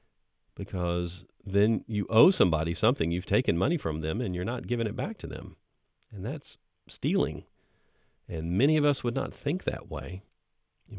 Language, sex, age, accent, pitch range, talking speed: English, male, 40-59, American, 90-115 Hz, 175 wpm